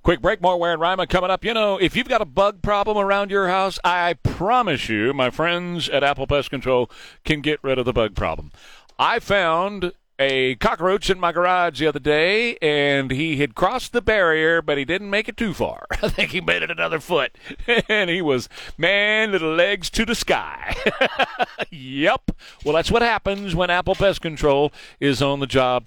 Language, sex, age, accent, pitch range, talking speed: English, male, 40-59, American, 130-185 Hz, 200 wpm